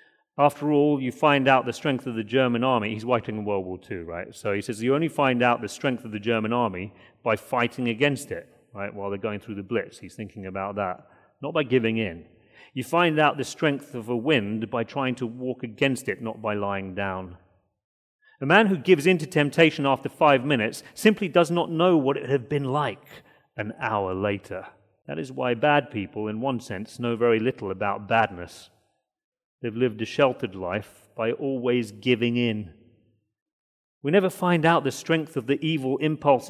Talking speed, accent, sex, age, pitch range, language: 200 wpm, British, male, 40-59, 105-135 Hz, English